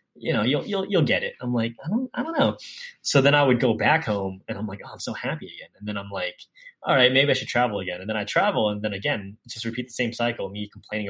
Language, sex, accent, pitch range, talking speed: English, male, American, 105-145 Hz, 290 wpm